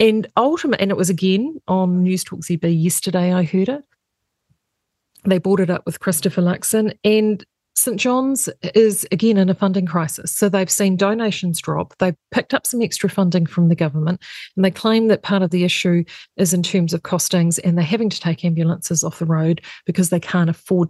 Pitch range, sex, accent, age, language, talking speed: 170-210 Hz, female, Australian, 40-59, English, 200 wpm